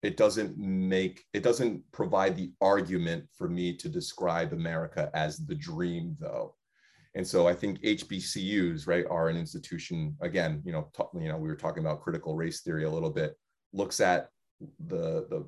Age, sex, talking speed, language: 30-49, male, 175 wpm, English